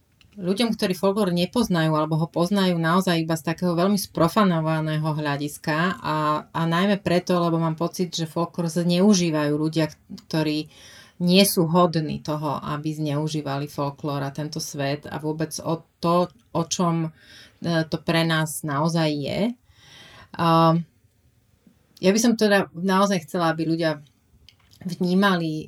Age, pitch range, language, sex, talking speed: 30-49, 155-185 Hz, Slovak, female, 135 wpm